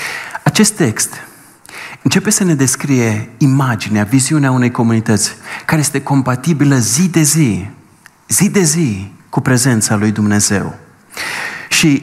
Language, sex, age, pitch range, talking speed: Romanian, male, 30-49, 115-170 Hz, 120 wpm